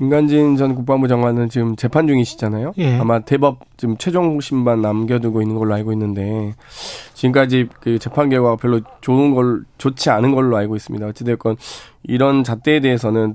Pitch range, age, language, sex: 125-180 Hz, 20-39, Korean, male